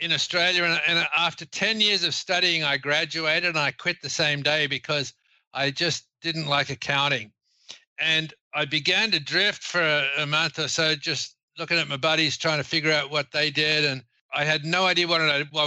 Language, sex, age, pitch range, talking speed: English, male, 50-69, 140-160 Hz, 190 wpm